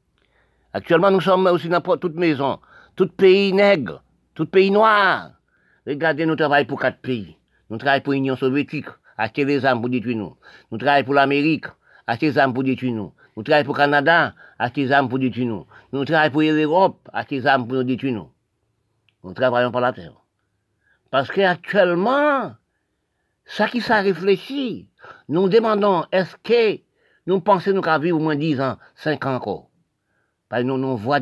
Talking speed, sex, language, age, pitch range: 180 wpm, male, French, 60-79, 125-170 Hz